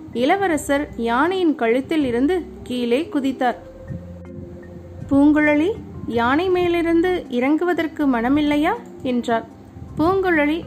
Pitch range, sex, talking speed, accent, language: 245-325 Hz, female, 75 wpm, native, Tamil